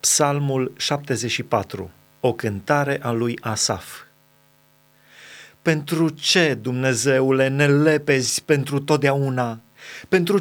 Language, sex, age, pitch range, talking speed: Romanian, male, 30-49, 140-165 Hz, 85 wpm